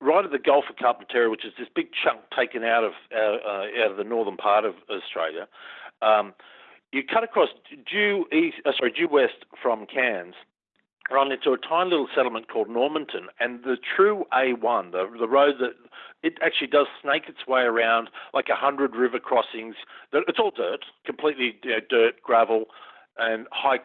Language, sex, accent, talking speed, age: English, male, Australian, 180 wpm, 50-69